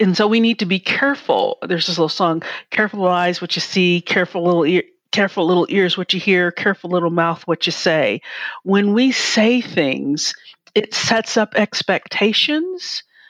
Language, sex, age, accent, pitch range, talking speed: English, female, 40-59, American, 185-245 Hz, 180 wpm